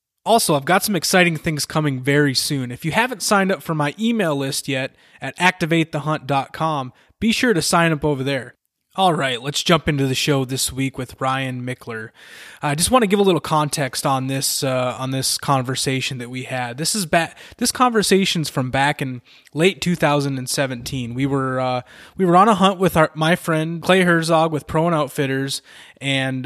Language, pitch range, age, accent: English, 130-165 Hz, 20-39, American